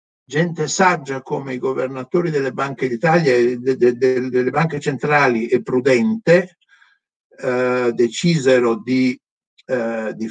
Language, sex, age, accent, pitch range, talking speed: Italian, male, 60-79, native, 125-175 Hz, 135 wpm